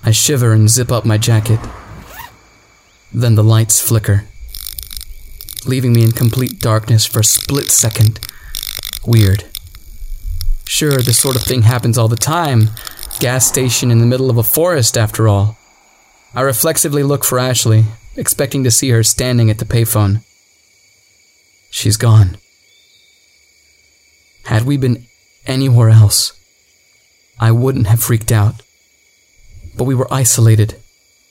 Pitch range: 105-125 Hz